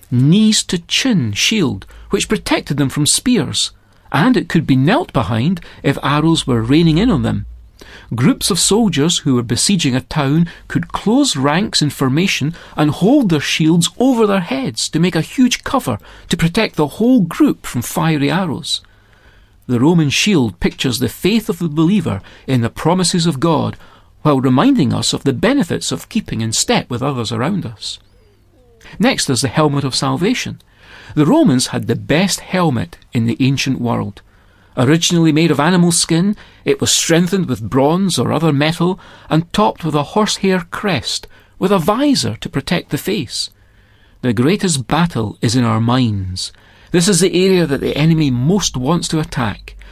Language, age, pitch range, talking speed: English, 40-59, 120-180 Hz, 170 wpm